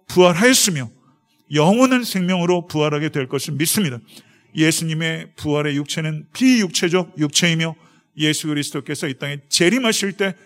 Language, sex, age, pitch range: Korean, male, 40-59, 140-175 Hz